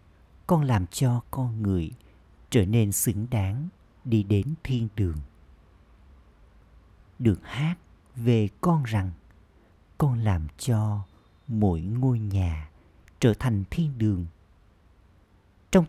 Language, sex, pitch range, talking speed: Vietnamese, male, 90-120 Hz, 110 wpm